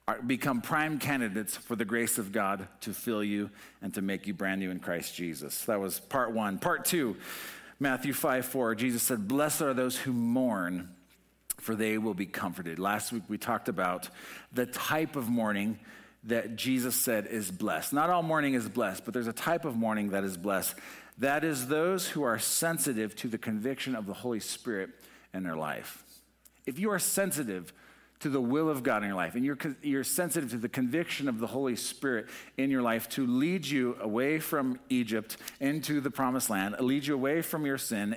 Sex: male